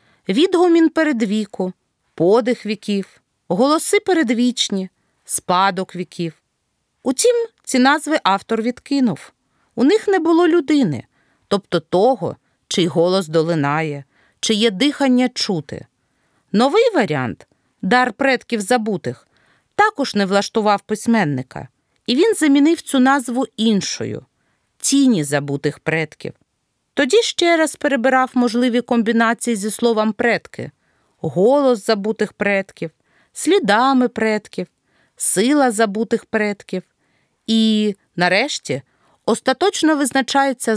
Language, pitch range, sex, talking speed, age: Ukrainian, 190-275 Hz, female, 100 wpm, 40-59